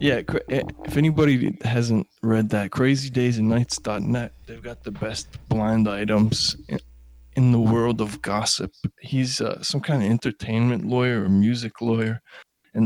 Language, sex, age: English, male, 20-39